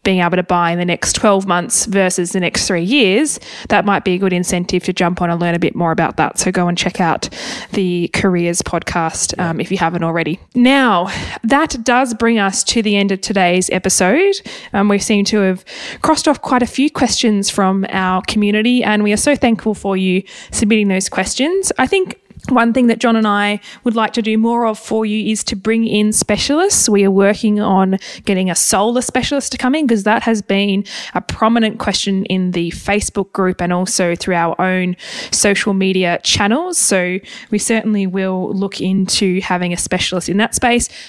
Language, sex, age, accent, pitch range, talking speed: English, female, 20-39, Australian, 185-225 Hz, 205 wpm